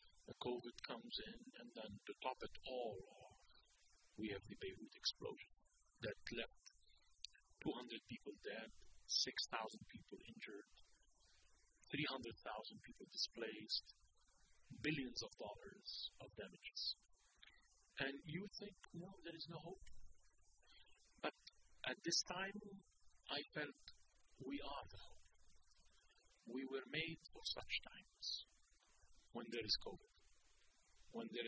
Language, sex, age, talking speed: English, male, 40-59, 120 wpm